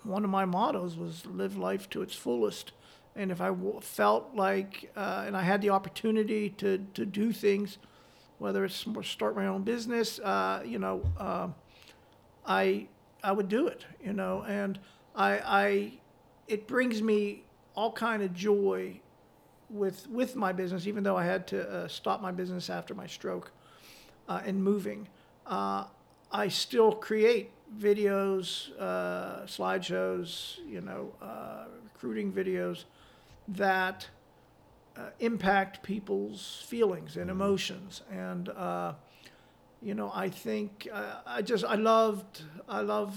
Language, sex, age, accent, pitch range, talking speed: English, male, 50-69, American, 180-210 Hz, 145 wpm